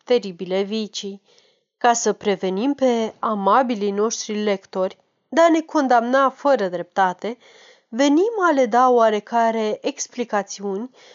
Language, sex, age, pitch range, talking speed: Romanian, female, 30-49, 210-290 Hz, 115 wpm